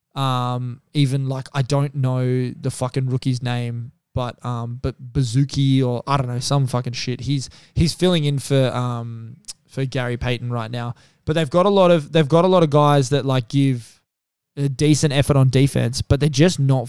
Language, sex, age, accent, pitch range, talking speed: English, male, 20-39, Australian, 125-145 Hz, 200 wpm